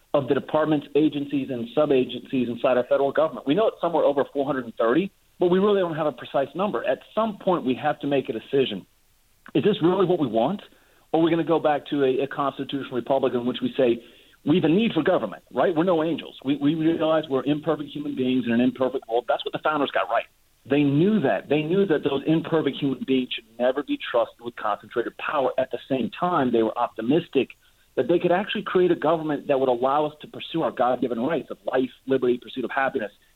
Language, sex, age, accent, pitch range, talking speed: English, male, 40-59, American, 125-155 Hz, 230 wpm